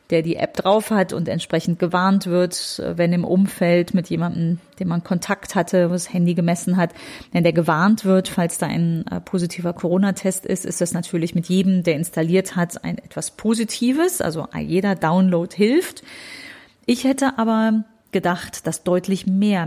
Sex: female